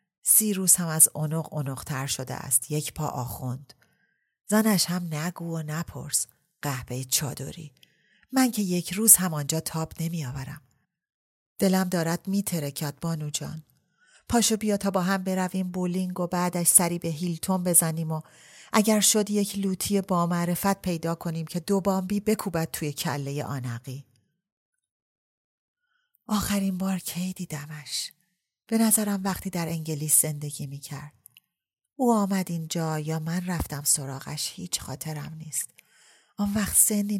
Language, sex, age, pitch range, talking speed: Persian, female, 40-59, 150-190 Hz, 135 wpm